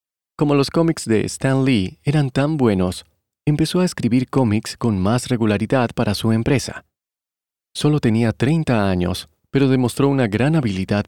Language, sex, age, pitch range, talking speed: Spanish, male, 30-49, 105-140 Hz, 150 wpm